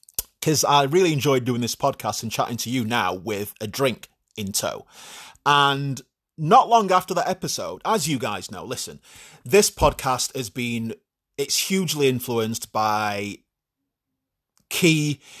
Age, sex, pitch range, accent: 30-49, male, 115-150 Hz, British